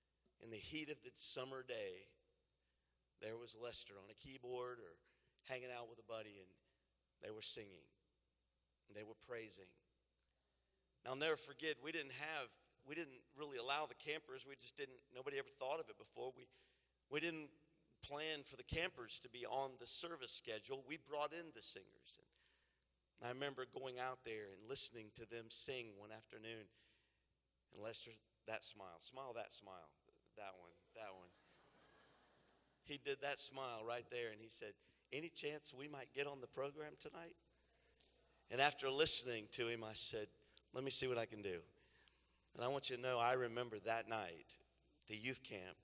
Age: 50-69